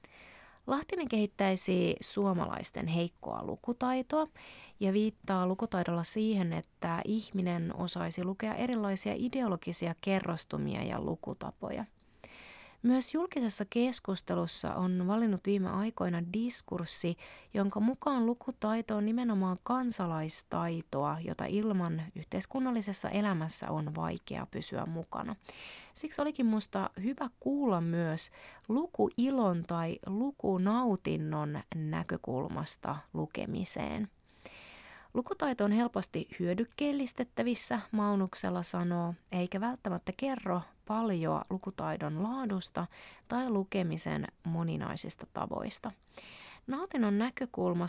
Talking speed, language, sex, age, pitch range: 85 wpm, Finnish, female, 30-49, 175-235 Hz